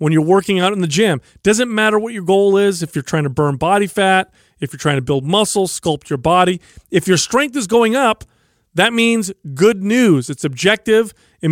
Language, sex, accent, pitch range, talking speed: English, male, American, 170-220 Hz, 220 wpm